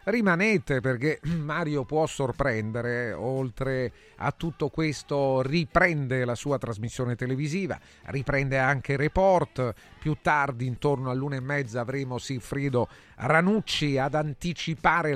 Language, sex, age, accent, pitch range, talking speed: Italian, male, 40-59, native, 120-150 Hz, 110 wpm